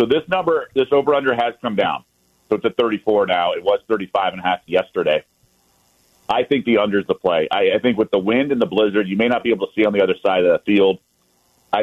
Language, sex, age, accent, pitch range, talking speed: English, male, 40-59, American, 95-115 Hz, 260 wpm